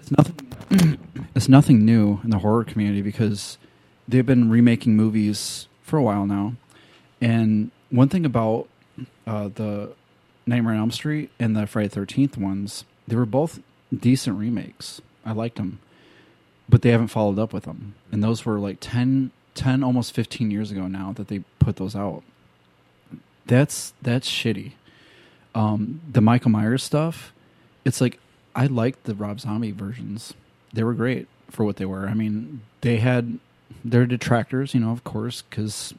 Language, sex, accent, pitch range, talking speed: English, male, American, 105-130 Hz, 160 wpm